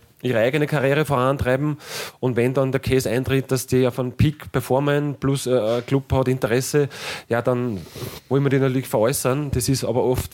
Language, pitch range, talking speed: German, 115-135 Hz, 185 wpm